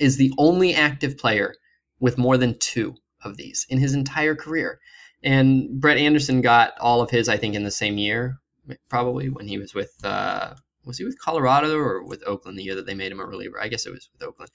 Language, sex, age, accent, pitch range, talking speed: English, male, 20-39, American, 120-155 Hz, 225 wpm